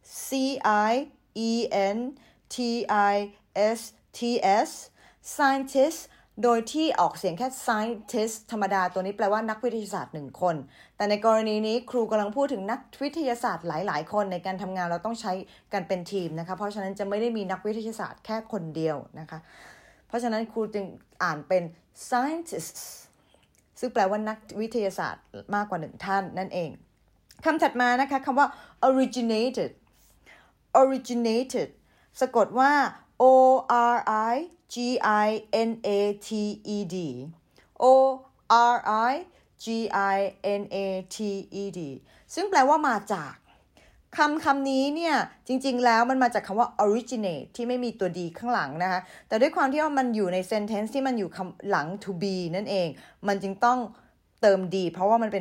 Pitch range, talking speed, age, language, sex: 190-245 Hz, 40 wpm, 20-39, English, female